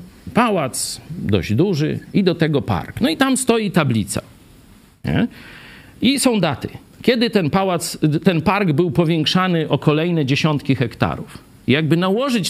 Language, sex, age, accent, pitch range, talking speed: Polish, male, 50-69, native, 100-155 Hz, 135 wpm